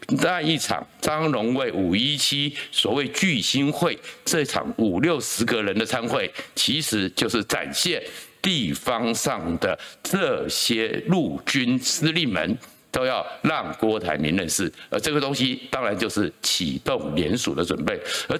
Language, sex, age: Chinese, male, 60-79